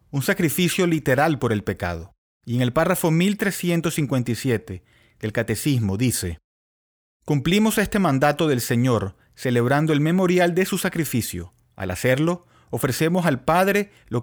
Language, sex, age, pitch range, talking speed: Spanish, male, 30-49, 105-155 Hz, 130 wpm